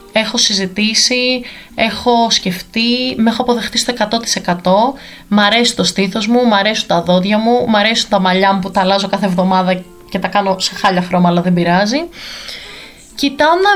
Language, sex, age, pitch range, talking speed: Greek, female, 20-39, 195-270 Hz, 160 wpm